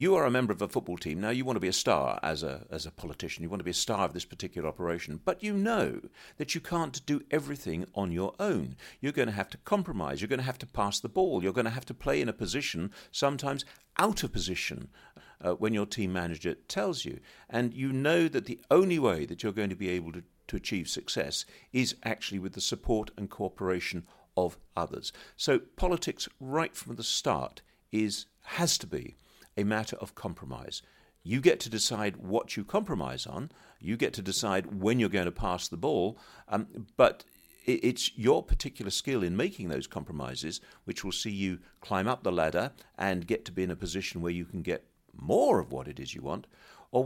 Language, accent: English, British